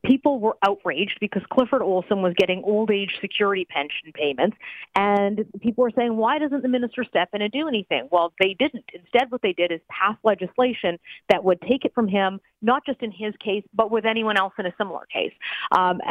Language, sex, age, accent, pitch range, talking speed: English, female, 40-59, American, 180-235 Hz, 205 wpm